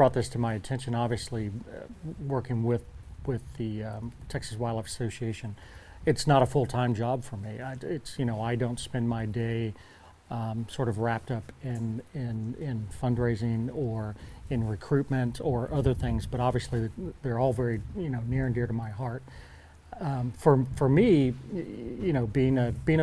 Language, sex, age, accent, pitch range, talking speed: English, male, 40-59, American, 115-130 Hz, 180 wpm